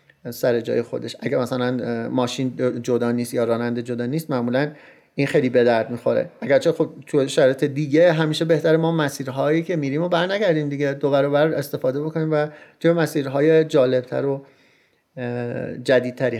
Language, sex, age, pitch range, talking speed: Persian, male, 30-49, 130-175 Hz, 150 wpm